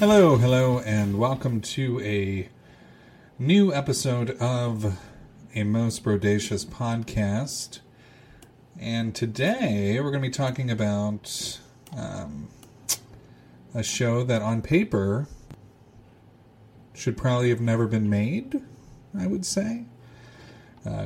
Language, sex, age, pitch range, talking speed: English, male, 30-49, 110-130 Hz, 105 wpm